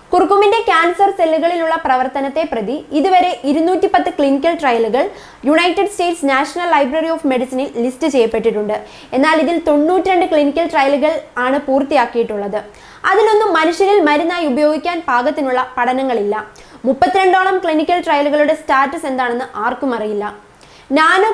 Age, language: 20-39, Malayalam